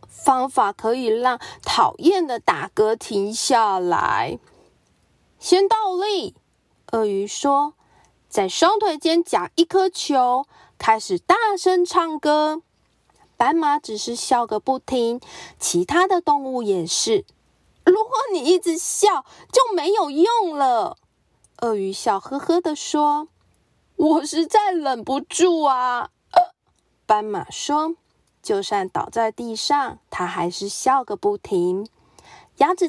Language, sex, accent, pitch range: Chinese, female, native, 220-345 Hz